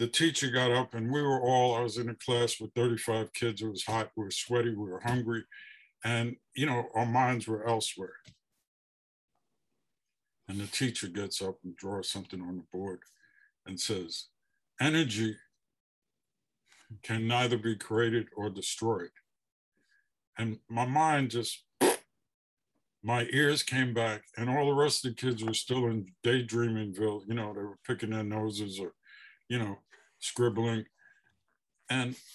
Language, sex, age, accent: English, male, 50-69, American